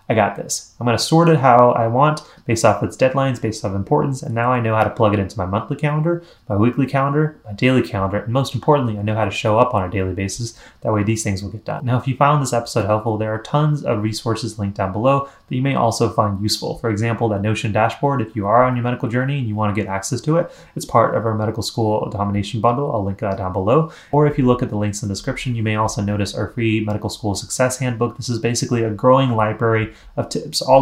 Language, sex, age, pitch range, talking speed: English, male, 30-49, 105-130 Hz, 265 wpm